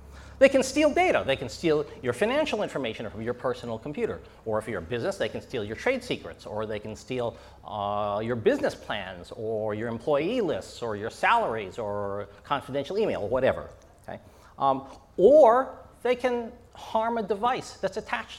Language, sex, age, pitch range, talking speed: English, male, 40-59, 110-170 Hz, 175 wpm